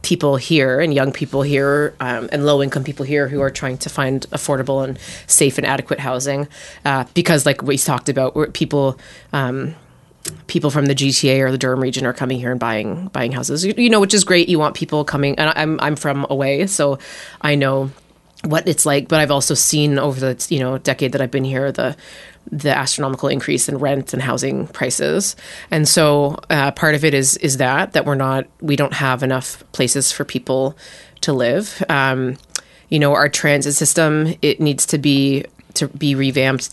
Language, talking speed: English, 200 wpm